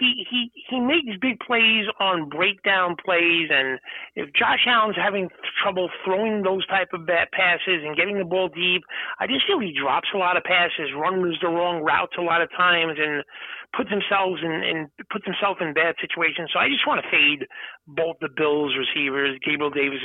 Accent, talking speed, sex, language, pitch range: American, 195 wpm, male, English, 165-210 Hz